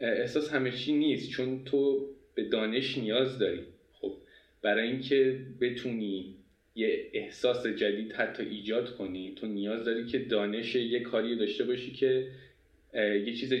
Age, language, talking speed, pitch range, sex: 20-39, Persian, 135 wpm, 105-140 Hz, male